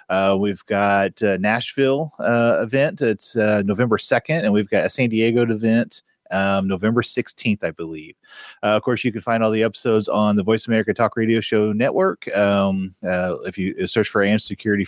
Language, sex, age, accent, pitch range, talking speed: English, male, 30-49, American, 100-120 Hz, 195 wpm